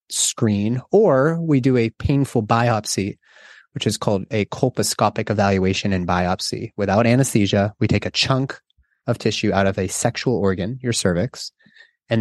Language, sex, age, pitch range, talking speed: English, male, 30-49, 100-125 Hz, 150 wpm